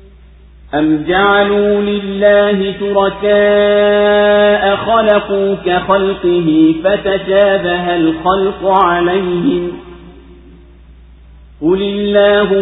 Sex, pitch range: male, 175-200 Hz